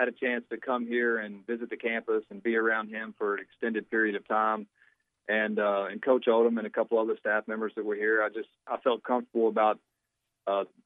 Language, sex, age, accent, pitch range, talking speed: English, male, 40-59, American, 100-115 Hz, 225 wpm